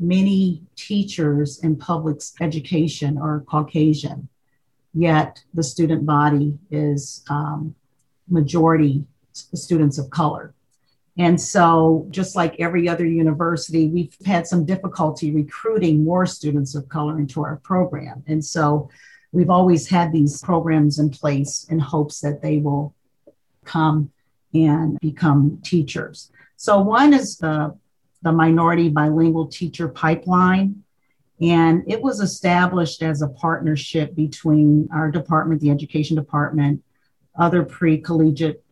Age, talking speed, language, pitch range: 50-69, 120 wpm, English, 145-170 Hz